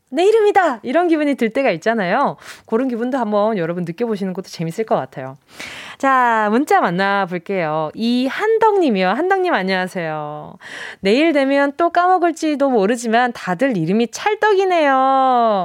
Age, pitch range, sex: 20-39, 225-345 Hz, female